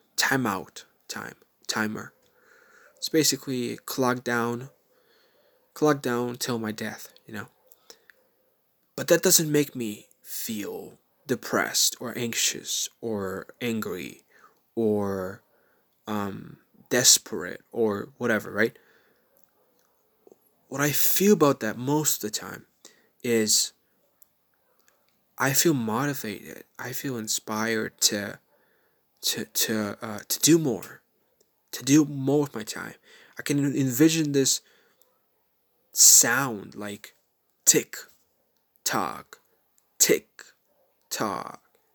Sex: male